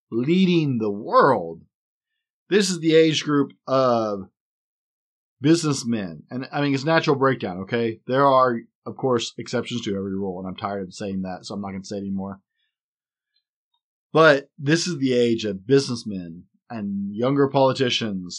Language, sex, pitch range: English, male, 105-140 Hz